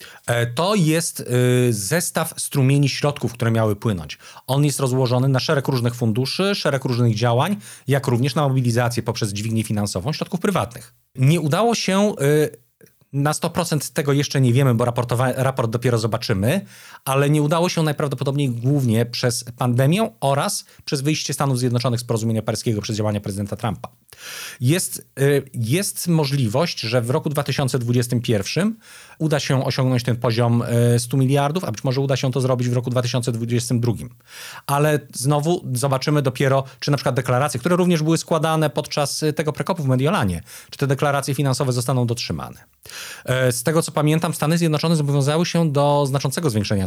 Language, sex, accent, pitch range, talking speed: Polish, male, native, 120-150 Hz, 150 wpm